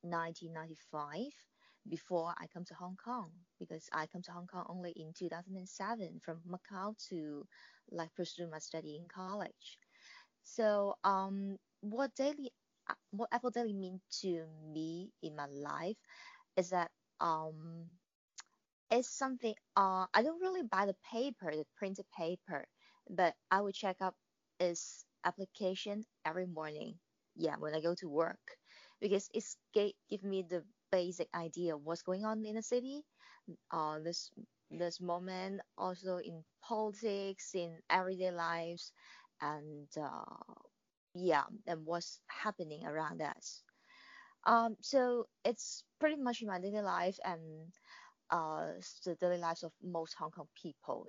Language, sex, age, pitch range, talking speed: English, female, 20-39, 170-215 Hz, 140 wpm